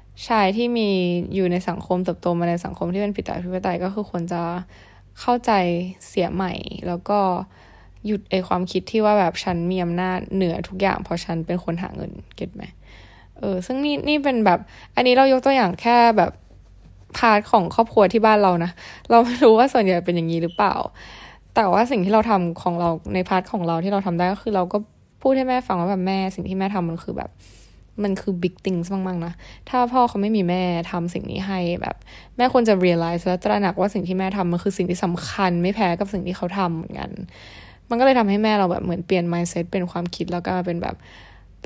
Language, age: Thai, 10-29